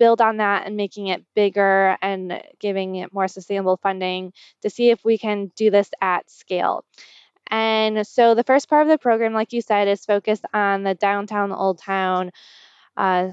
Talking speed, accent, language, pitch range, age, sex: 185 wpm, American, English, 190-220 Hz, 20-39, female